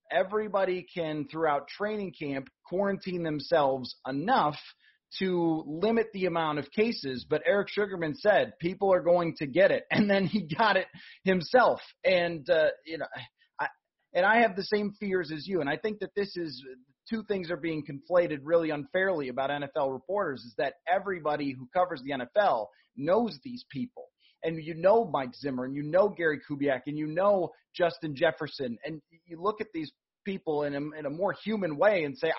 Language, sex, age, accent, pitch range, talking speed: English, male, 30-49, American, 155-200 Hz, 185 wpm